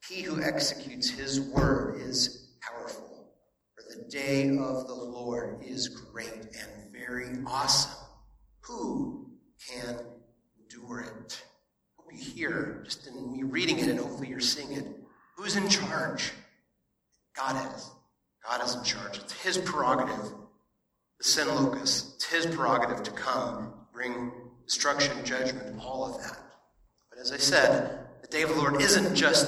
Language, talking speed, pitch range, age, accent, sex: English, 145 wpm, 125-165 Hz, 40-59, American, male